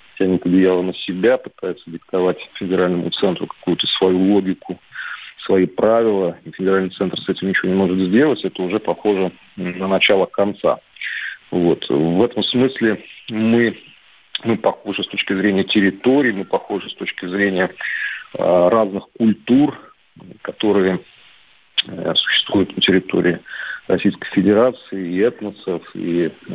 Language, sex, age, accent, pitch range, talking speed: Russian, male, 40-59, native, 95-110 Hz, 125 wpm